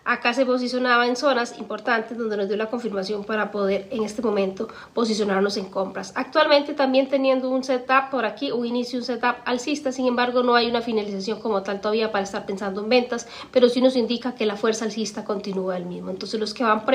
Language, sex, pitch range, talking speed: Spanish, female, 215-255 Hz, 215 wpm